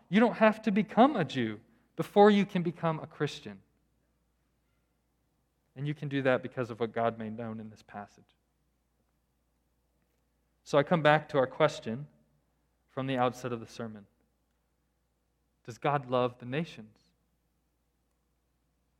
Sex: male